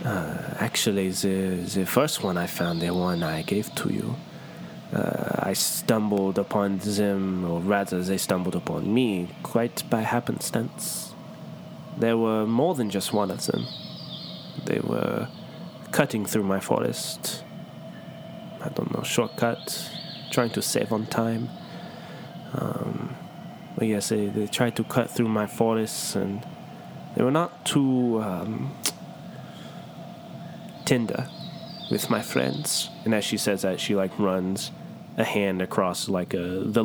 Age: 20-39